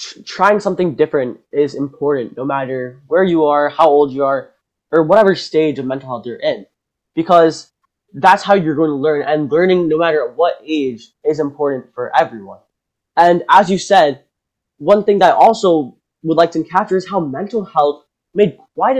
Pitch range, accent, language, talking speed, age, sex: 150-195 Hz, American, English, 185 wpm, 10-29, male